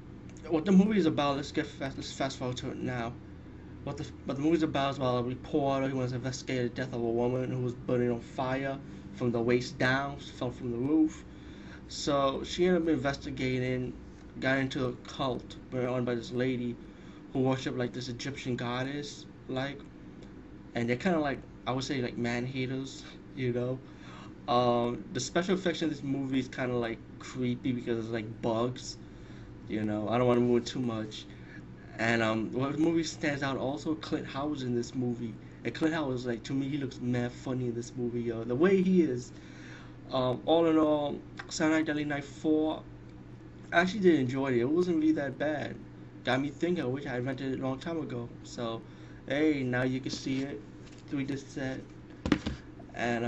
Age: 20-39